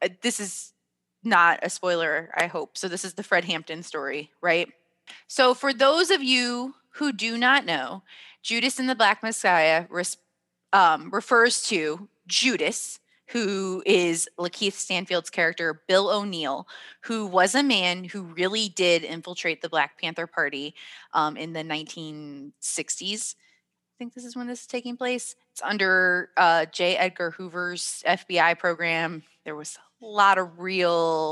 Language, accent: English, American